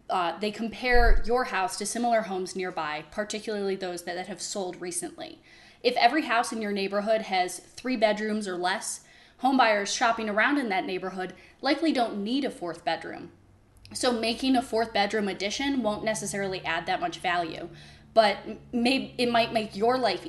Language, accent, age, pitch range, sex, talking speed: English, American, 10-29, 195-255 Hz, female, 170 wpm